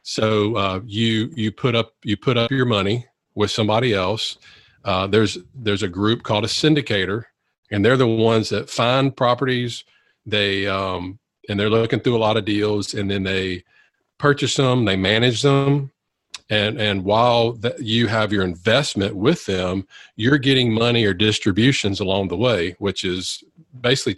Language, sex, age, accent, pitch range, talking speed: English, male, 40-59, American, 100-125 Hz, 170 wpm